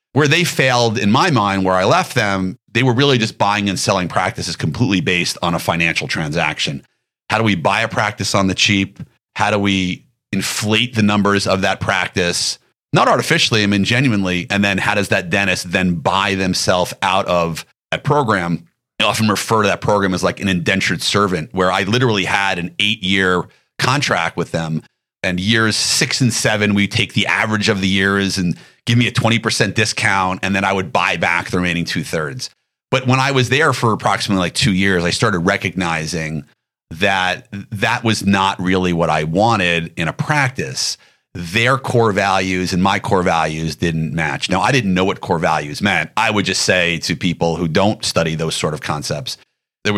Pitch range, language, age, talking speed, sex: 90-110 Hz, English, 40-59, 195 wpm, male